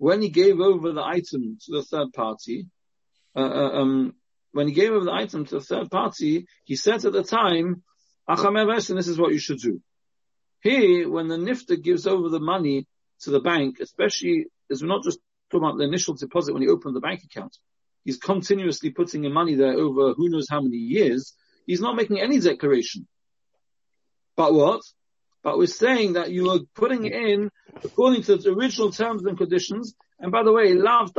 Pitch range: 150-235 Hz